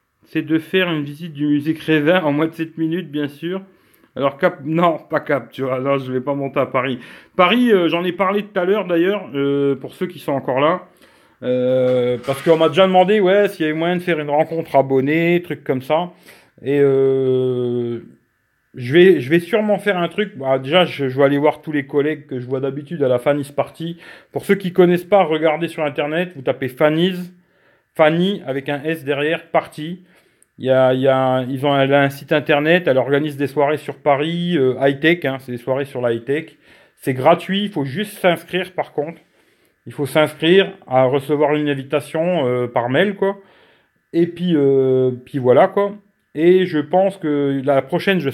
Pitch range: 135-175 Hz